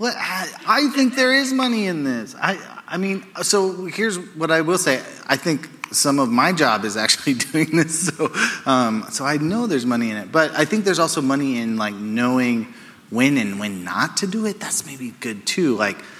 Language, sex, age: English, male, 30-49